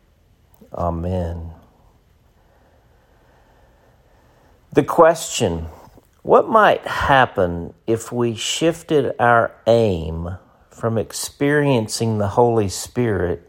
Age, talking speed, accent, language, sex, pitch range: 50-69, 70 wpm, American, English, male, 90-120 Hz